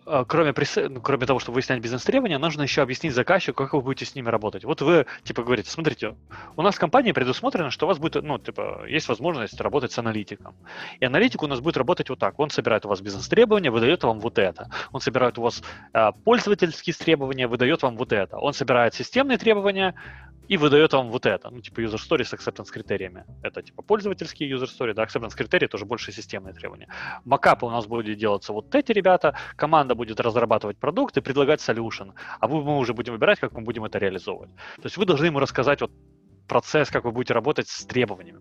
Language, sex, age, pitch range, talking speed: Russian, male, 20-39, 115-165 Hz, 205 wpm